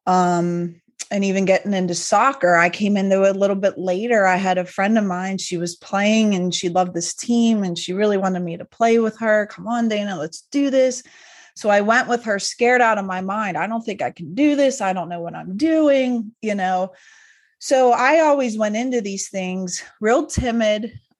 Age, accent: 30-49, American